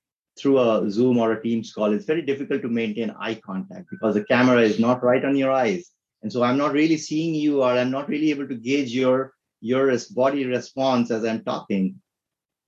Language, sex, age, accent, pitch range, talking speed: English, male, 30-49, Indian, 105-125 Hz, 210 wpm